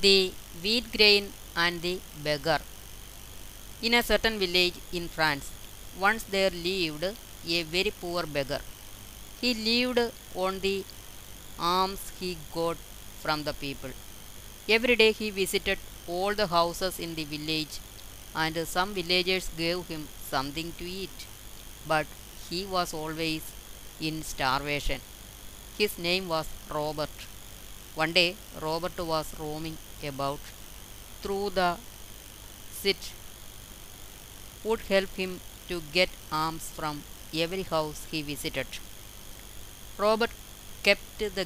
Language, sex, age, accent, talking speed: Malayalam, female, 20-39, native, 115 wpm